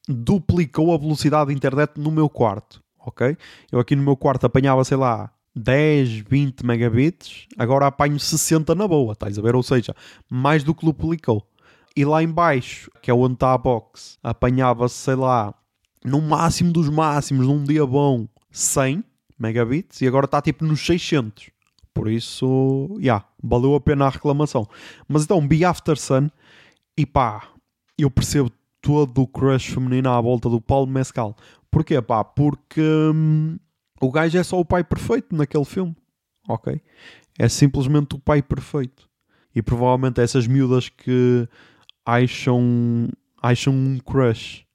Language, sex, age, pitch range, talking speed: Portuguese, male, 20-39, 125-155 Hz, 155 wpm